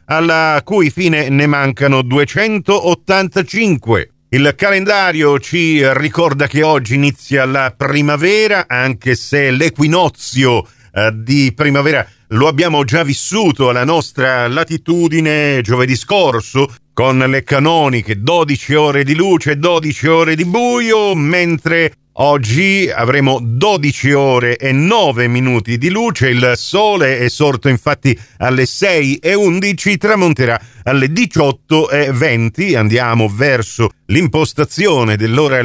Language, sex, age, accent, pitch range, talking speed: Italian, male, 50-69, native, 120-155 Hz, 115 wpm